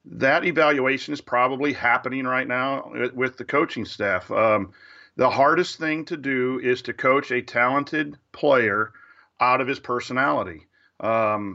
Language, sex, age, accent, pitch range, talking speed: English, male, 40-59, American, 120-140 Hz, 145 wpm